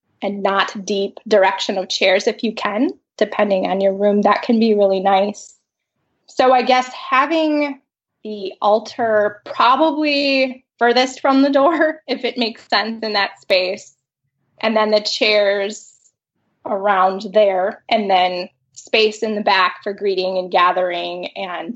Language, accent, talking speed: English, American, 145 wpm